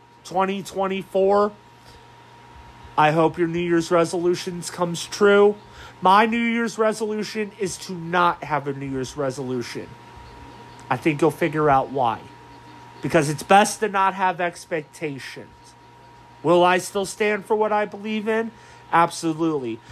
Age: 40-59